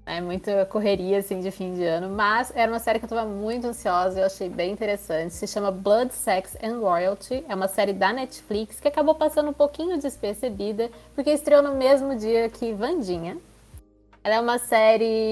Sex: female